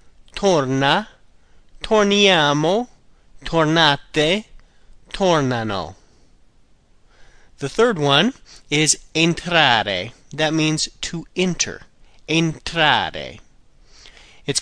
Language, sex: Italian, male